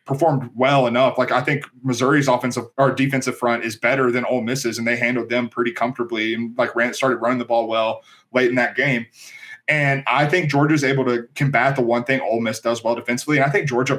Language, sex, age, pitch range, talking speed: English, male, 20-39, 120-140 Hz, 230 wpm